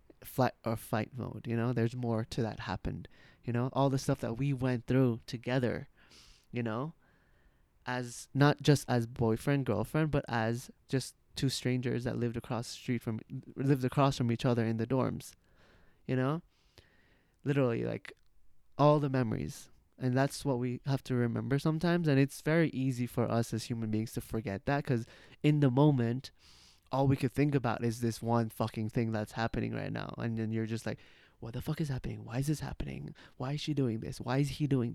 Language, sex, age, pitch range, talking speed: English, male, 20-39, 115-140 Hz, 200 wpm